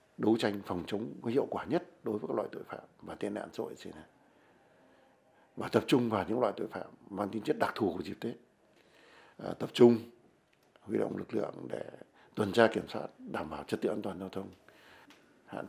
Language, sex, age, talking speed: Vietnamese, male, 60-79, 215 wpm